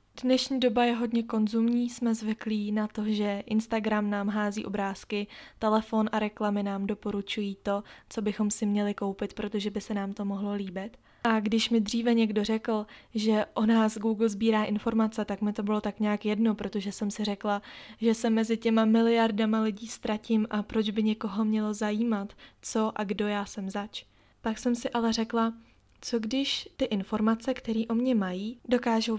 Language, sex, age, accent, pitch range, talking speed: Czech, female, 20-39, native, 210-230 Hz, 180 wpm